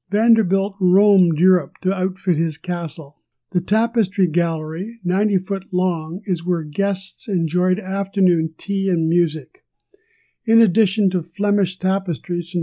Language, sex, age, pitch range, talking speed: English, male, 50-69, 170-195 Hz, 130 wpm